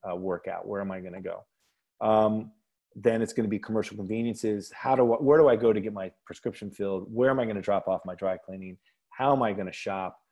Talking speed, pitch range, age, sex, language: 250 wpm, 105-130 Hz, 30-49, male, English